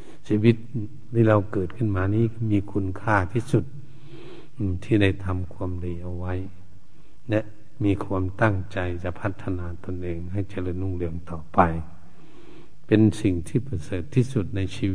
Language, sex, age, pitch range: Thai, male, 70-89, 95-125 Hz